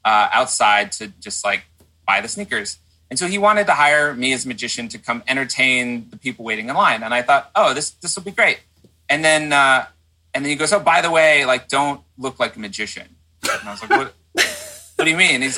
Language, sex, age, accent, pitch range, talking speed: English, male, 30-49, American, 105-140 Hz, 245 wpm